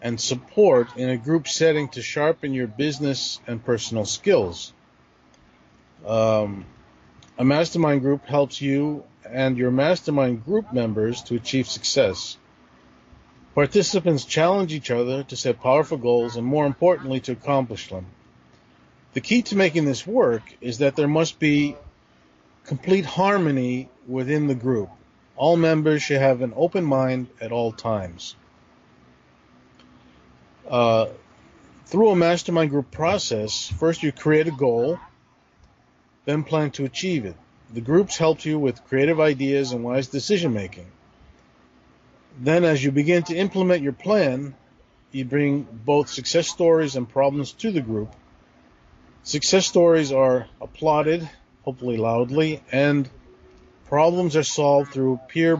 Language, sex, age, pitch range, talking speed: English, male, 40-59, 110-155 Hz, 135 wpm